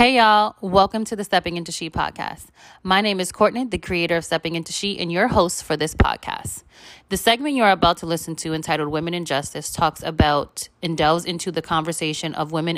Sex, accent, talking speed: female, American, 210 wpm